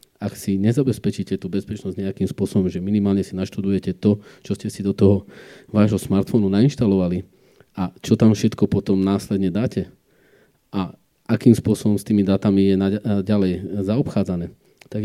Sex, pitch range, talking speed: male, 95-105 Hz, 150 wpm